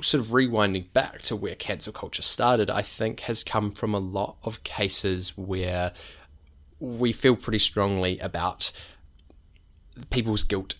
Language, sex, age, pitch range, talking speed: English, male, 20-39, 90-105 Hz, 145 wpm